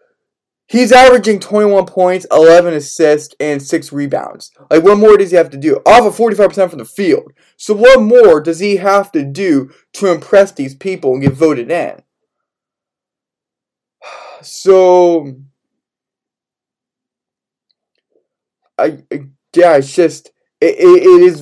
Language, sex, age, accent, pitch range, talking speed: English, male, 20-39, American, 160-245 Hz, 135 wpm